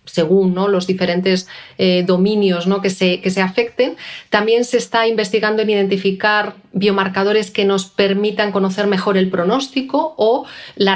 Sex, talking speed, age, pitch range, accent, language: female, 135 wpm, 30-49, 185-220 Hz, Spanish, Spanish